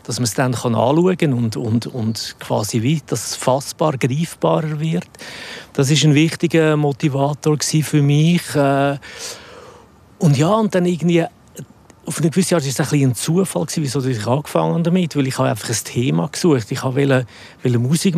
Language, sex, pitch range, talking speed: German, male, 125-160 Hz, 185 wpm